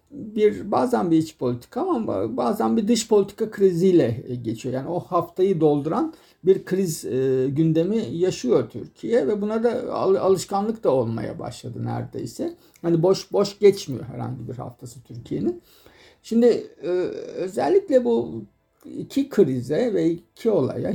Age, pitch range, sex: 50-69, 130-190 Hz, male